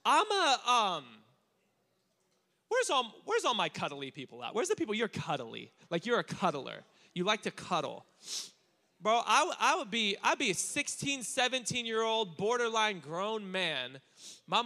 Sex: male